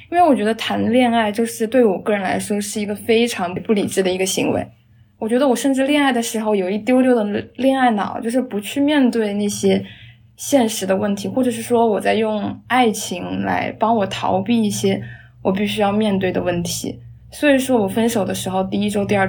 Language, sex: Chinese, female